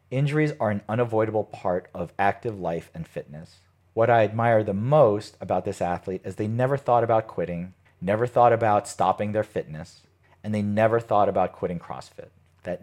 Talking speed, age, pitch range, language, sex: 180 wpm, 40-59, 90-110 Hz, English, male